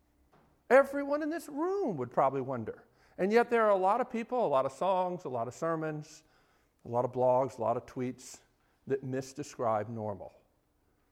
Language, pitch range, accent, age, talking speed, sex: English, 135-215 Hz, American, 50-69, 185 wpm, male